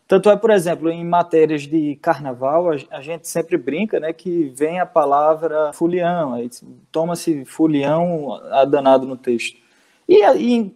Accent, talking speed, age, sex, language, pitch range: Brazilian, 145 wpm, 20-39, male, Portuguese, 145-190 Hz